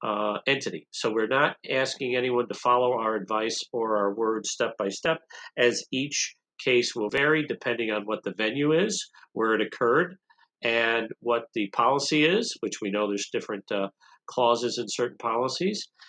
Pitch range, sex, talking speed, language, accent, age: 120-155 Hz, male, 170 wpm, English, American, 50-69